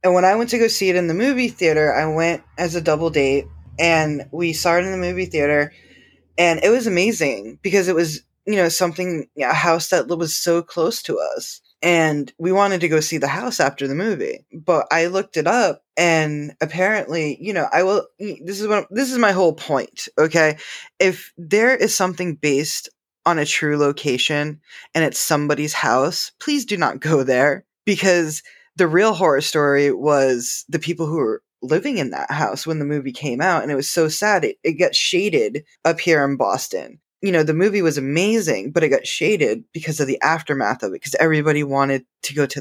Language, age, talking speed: English, 20-39, 205 wpm